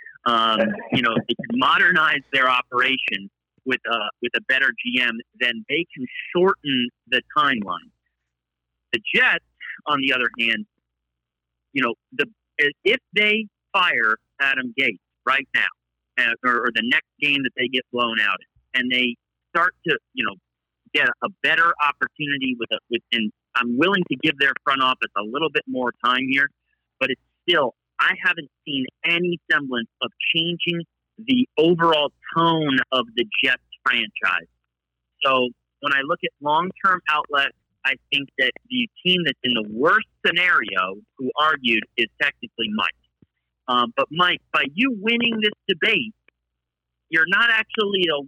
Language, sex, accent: English, male, American